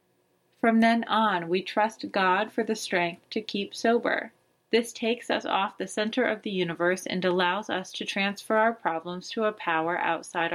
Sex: female